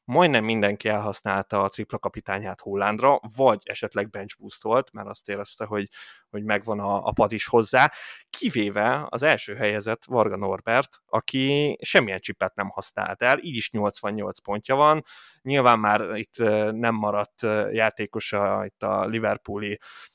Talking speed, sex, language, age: 145 wpm, male, Hungarian, 20-39